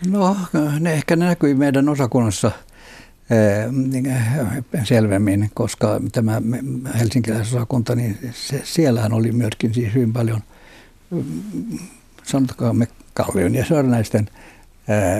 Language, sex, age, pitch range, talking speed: Finnish, male, 60-79, 120-140 Hz, 95 wpm